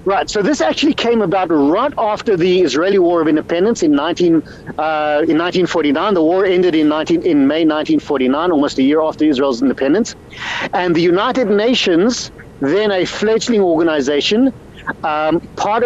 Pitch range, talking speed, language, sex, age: 175-245 Hz, 175 wpm, English, male, 50-69